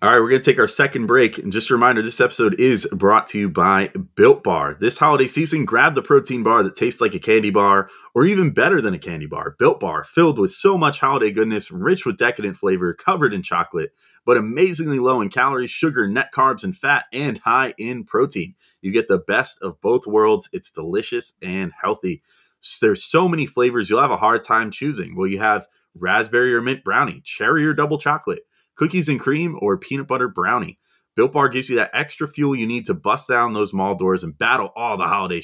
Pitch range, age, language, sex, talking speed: 105-155 Hz, 30-49, English, male, 220 wpm